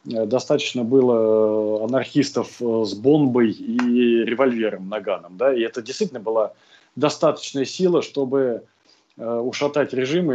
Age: 20-39